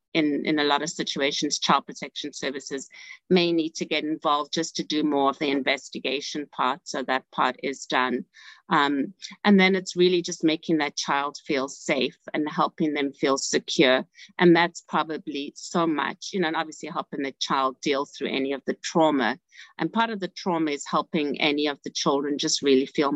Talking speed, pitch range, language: 195 wpm, 140-170 Hz, English